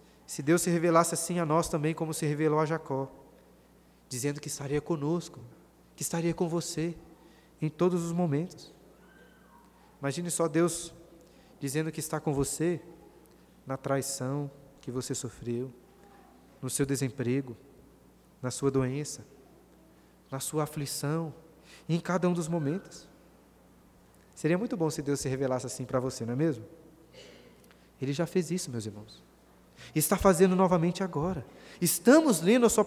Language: Portuguese